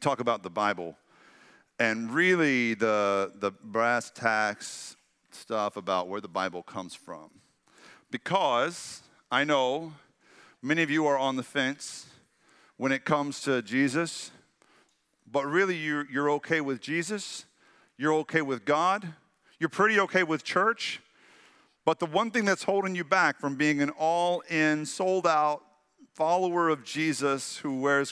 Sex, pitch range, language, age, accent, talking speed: male, 110-150 Hz, English, 50-69, American, 140 wpm